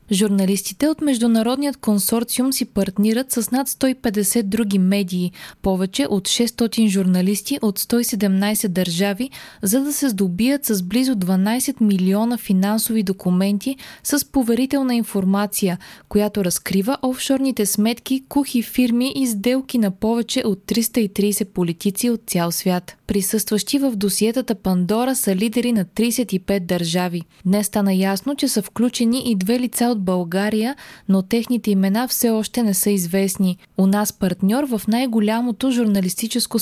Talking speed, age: 130 wpm, 20-39